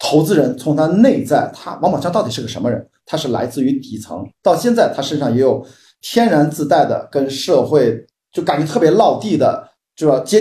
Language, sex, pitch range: Chinese, male, 140-215 Hz